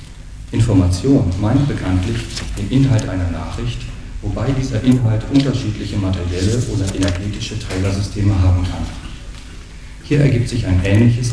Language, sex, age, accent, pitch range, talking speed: German, male, 40-59, German, 95-120 Hz, 115 wpm